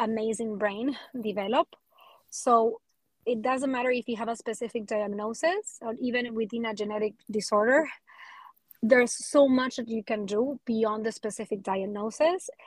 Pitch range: 220-260 Hz